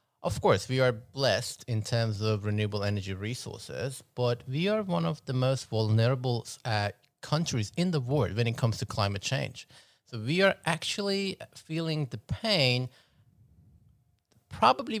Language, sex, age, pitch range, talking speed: English, male, 30-49, 110-145 Hz, 150 wpm